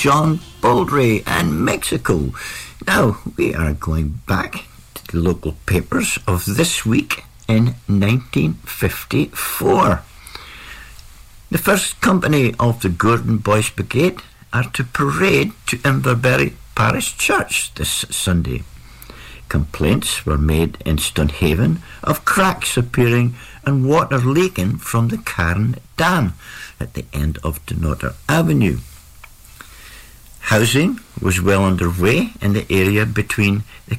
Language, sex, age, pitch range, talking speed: English, male, 60-79, 75-125 Hz, 115 wpm